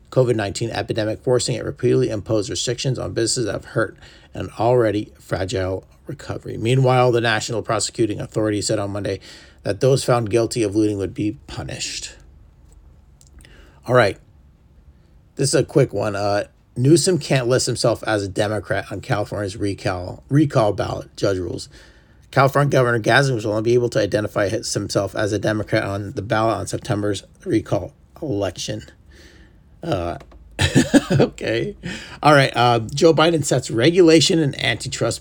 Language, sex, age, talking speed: English, male, 40-59, 145 wpm